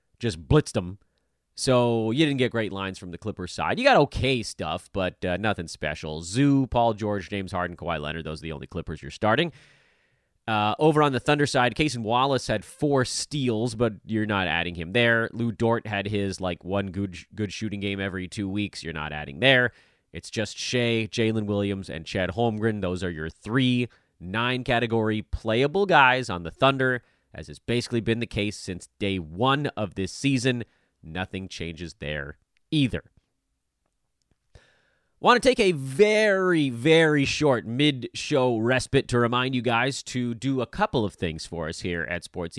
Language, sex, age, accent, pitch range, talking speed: English, male, 30-49, American, 90-125 Hz, 180 wpm